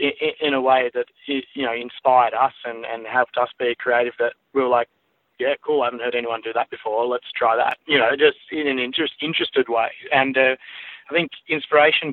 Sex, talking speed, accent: male, 215 wpm, Australian